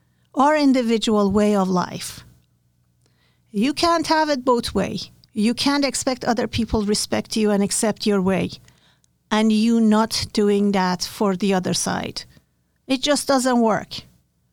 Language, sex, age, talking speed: English, female, 50-69, 145 wpm